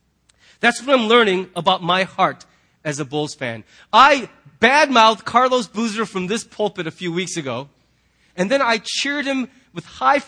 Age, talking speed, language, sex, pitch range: 30-49, 170 wpm, English, male, 140-200 Hz